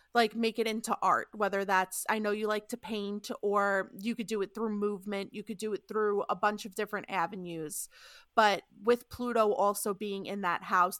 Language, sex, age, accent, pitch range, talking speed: English, female, 30-49, American, 195-230 Hz, 205 wpm